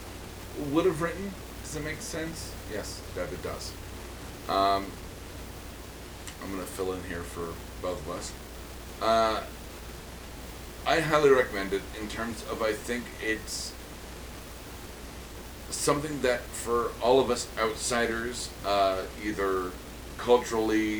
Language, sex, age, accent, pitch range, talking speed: English, male, 30-49, American, 85-110 Hz, 120 wpm